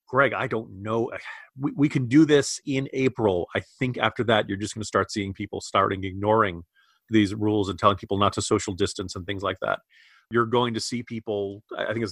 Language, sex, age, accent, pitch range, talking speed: English, male, 40-59, American, 105-125 Hz, 225 wpm